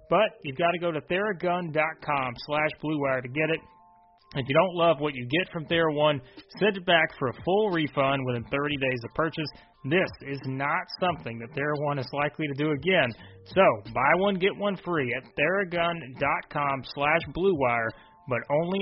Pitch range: 130-170 Hz